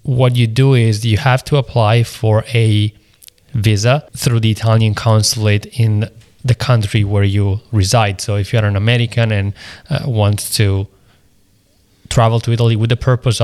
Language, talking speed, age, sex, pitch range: English, 165 wpm, 20-39, male, 105-120 Hz